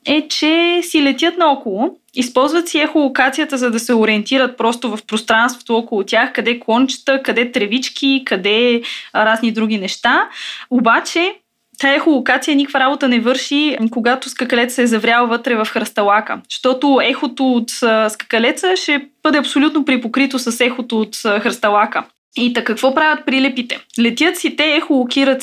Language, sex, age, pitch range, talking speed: Bulgarian, female, 20-39, 230-290 Hz, 145 wpm